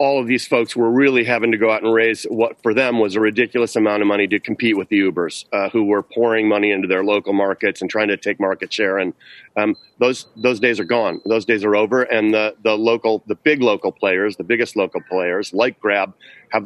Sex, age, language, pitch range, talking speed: male, 40-59, English, 110-135 Hz, 240 wpm